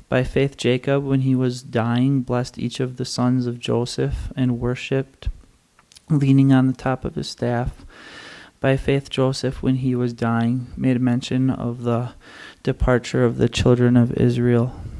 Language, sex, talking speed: English, male, 160 wpm